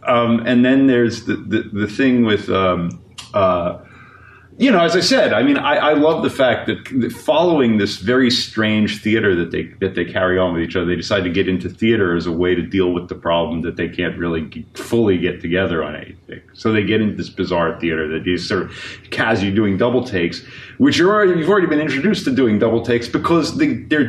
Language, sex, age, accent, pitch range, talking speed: English, male, 40-59, American, 95-130 Hz, 225 wpm